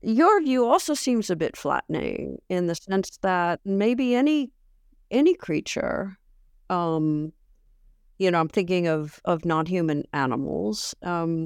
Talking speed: 130 wpm